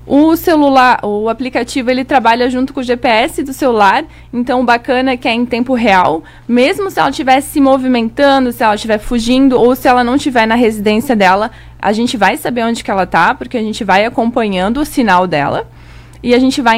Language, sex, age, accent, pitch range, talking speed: Portuguese, female, 20-39, Brazilian, 195-250 Hz, 210 wpm